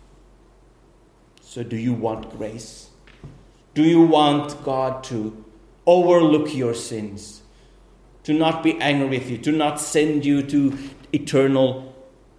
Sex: male